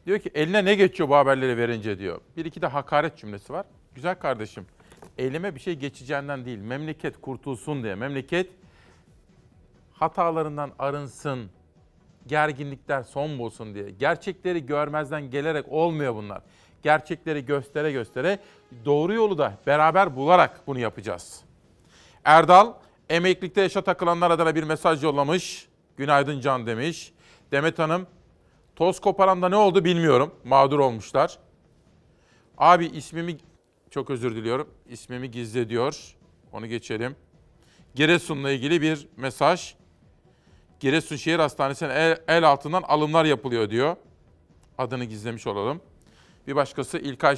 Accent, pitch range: native, 135-165 Hz